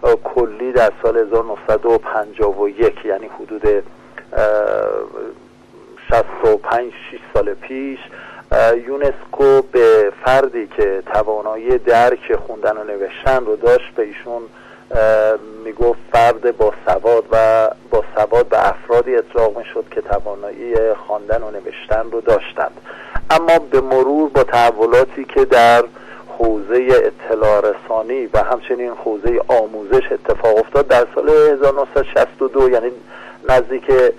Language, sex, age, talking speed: Persian, male, 50-69, 110 wpm